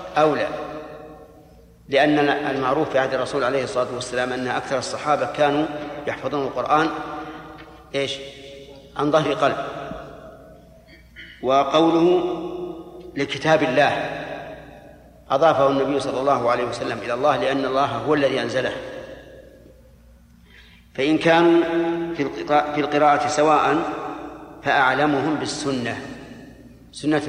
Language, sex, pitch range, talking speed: Arabic, male, 140-170 Hz, 95 wpm